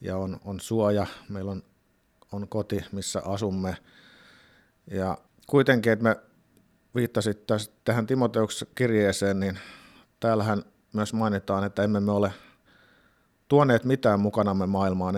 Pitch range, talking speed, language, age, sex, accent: 100-115 Hz, 125 wpm, Finnish, 50-69, male, native